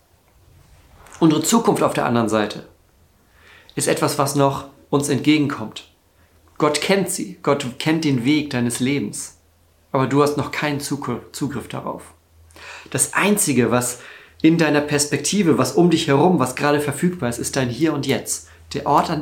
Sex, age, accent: male, 40-59, German